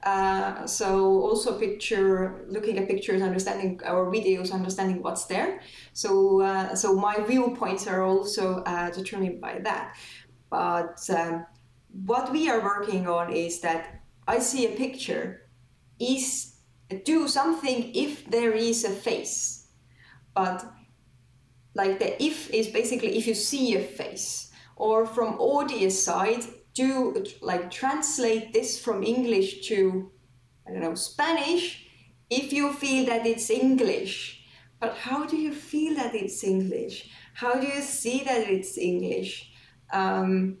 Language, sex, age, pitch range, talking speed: English, female, 20-39, 185-245 Hz, 135 wpm